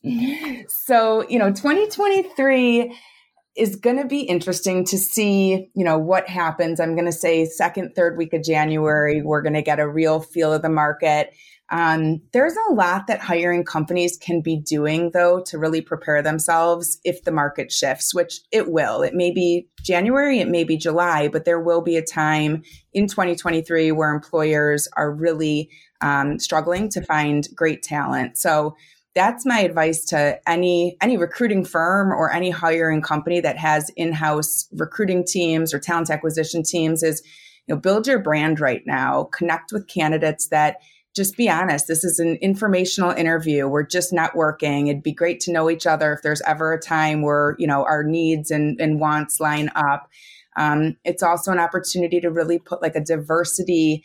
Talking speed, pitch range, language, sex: 180 wpm, 155-180 Hz, English, female